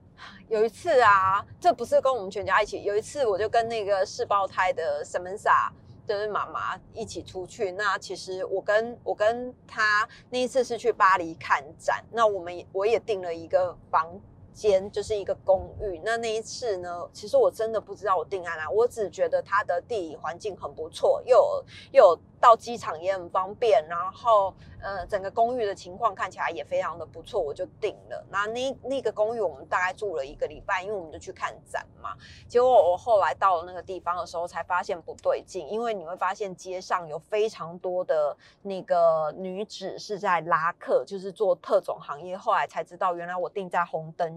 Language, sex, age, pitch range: Chinese, female, 30-49, 185-235 Hz